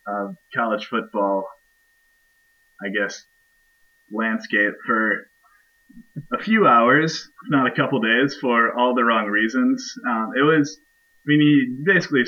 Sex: male